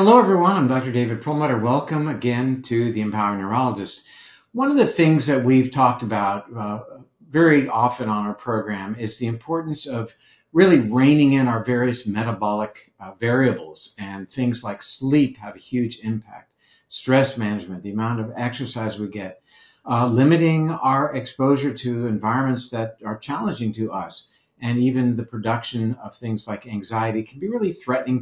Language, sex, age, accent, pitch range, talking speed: English, male, 60-79, American, 115-140 Hz, 165 wpm